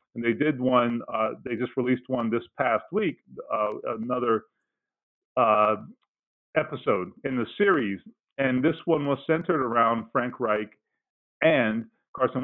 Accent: American